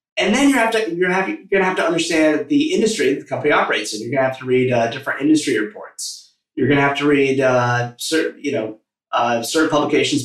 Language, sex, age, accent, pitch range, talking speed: English, male, 30-49, American, 125-165 Hz, 250 wpm